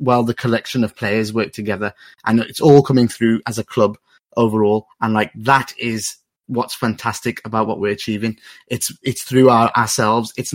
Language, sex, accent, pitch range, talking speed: English, male, British, 110-140 Hz, 180 wpm